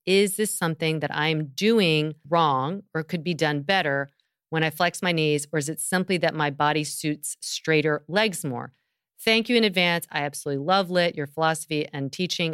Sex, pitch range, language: female, 150-195 Hz, English